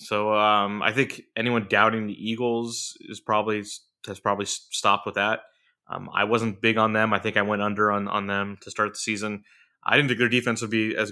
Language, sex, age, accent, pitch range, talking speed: English, male, 20-39, American, 100-120 Hz, 220 wpm